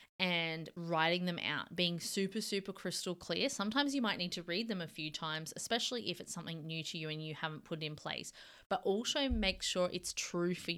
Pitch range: 155-190 Hz